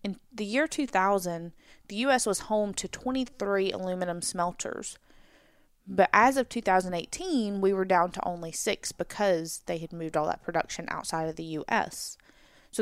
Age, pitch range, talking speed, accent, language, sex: 20-39, 175-220 Hz, 160 wpm, American, English, female